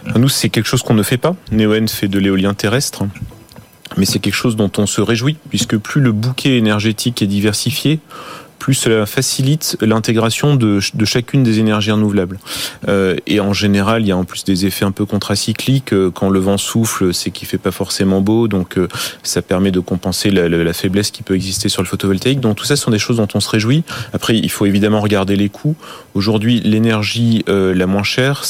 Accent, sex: French, male